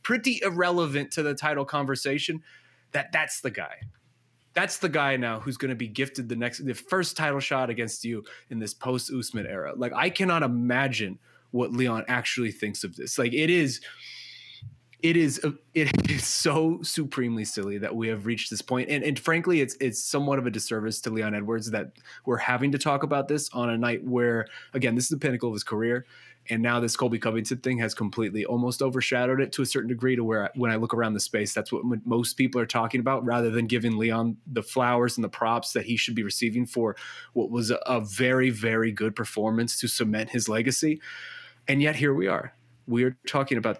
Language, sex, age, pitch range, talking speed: English, male, 20-39, 115-145 Hz, 215 wpm